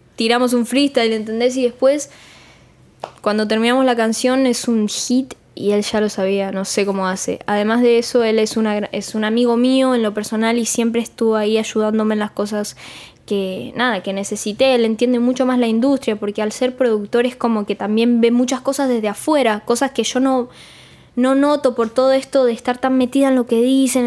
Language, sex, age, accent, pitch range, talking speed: English, female, 10-29, Argentinian, 220-260 Hz, 205 wpm